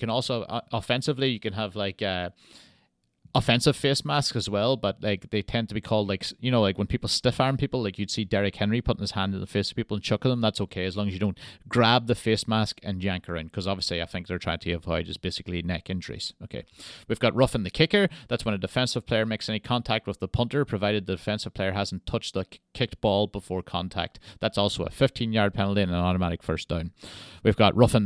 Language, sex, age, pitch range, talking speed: English, male, 30-49, 95-115 Hz, 245 wpm